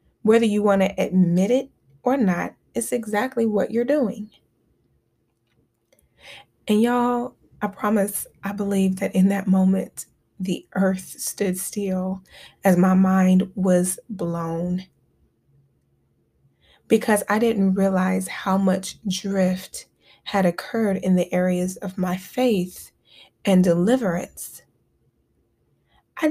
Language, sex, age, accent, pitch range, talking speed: English, female, 20-39, American, 180-220 Hz, 115 wpm